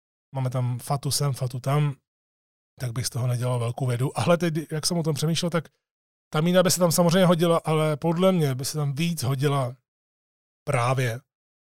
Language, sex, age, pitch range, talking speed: Czech, male, 30-49, 125-145 Hz, 190 wpm